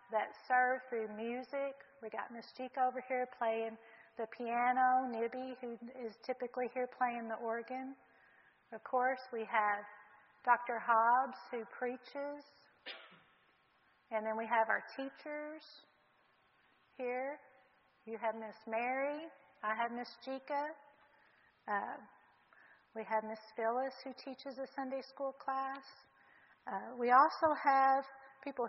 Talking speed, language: 125 wpm, English